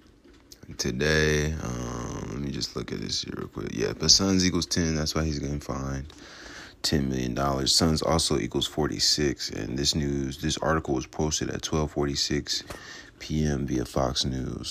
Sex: male